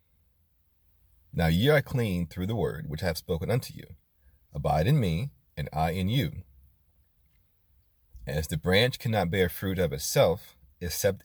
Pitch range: 80-95 Hz